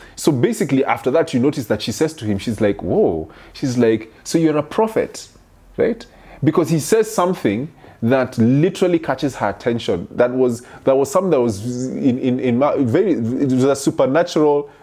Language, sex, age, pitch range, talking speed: English, male, 30-49, 120-165 Hz, 180 wpm